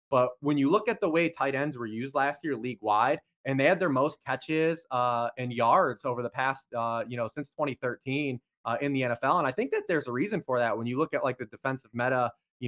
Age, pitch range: 20-39, 120-145 Hz